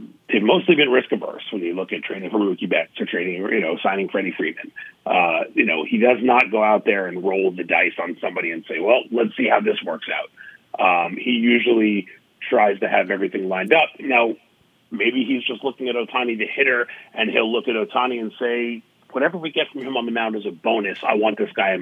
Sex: male